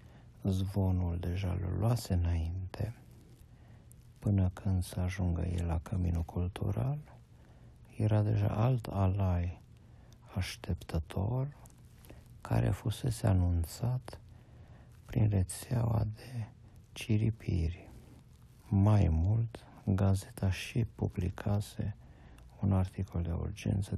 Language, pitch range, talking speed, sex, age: Romanian, 90-110 Hz, 85 wpm, male, 60-79